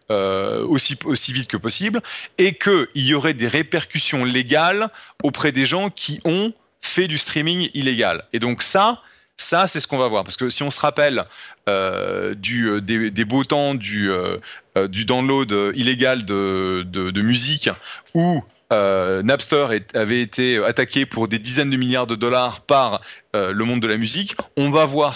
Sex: male